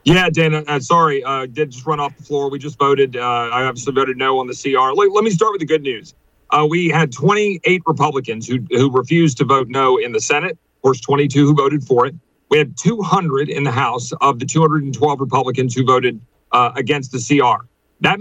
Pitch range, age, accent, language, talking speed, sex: 140-160 Hz, 40-59, American, English, 225 wpm, male